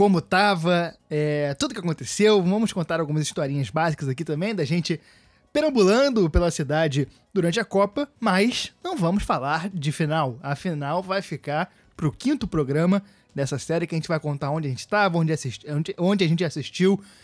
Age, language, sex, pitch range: 20-39, Portuguese, male, 155-200 Hz